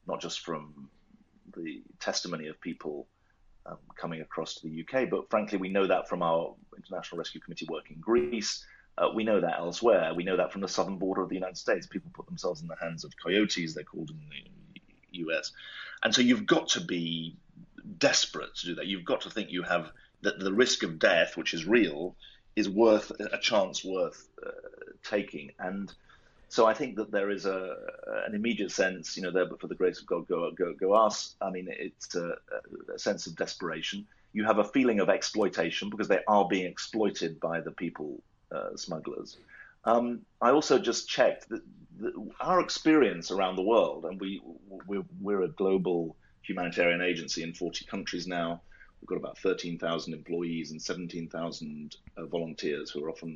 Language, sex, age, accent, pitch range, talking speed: English, male, 30-49, British, 85-125 Hz, 190 wpm